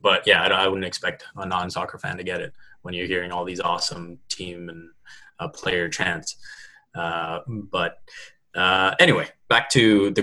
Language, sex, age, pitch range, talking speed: English, male, 20-39, 90-115 Hz, 170 wpm